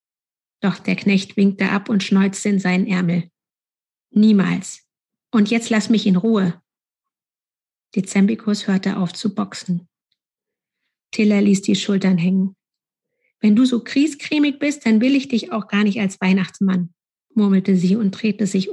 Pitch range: 195-235 Hz